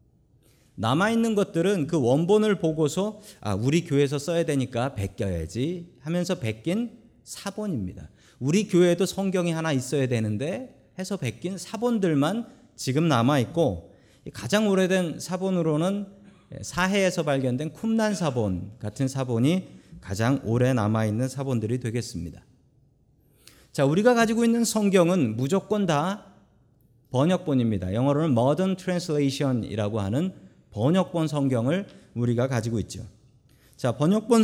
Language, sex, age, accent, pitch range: Korean, male, 40-59, native, 125-185 Hz